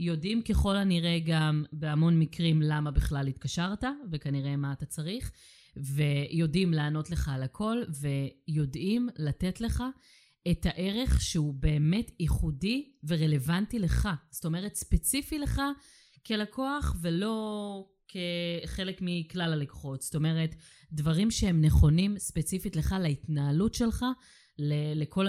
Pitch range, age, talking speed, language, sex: 150-190 Hz, 30-49, 110 wpm, Hebrew, female